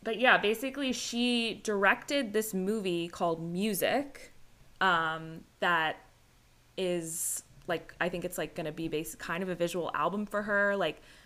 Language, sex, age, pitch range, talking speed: English, female, 20-39, 160-190 Hz, 150 wpm